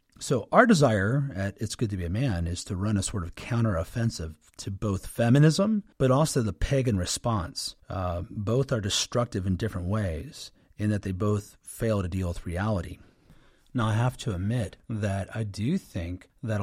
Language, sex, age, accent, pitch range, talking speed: English, male, 40-59, American, 95-125 Hz, 185 wpm